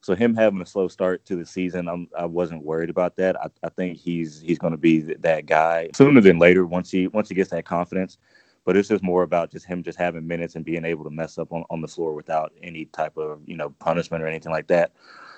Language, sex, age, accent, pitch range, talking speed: English, male, 20-39, American, 80-90 Hz, 260 wpm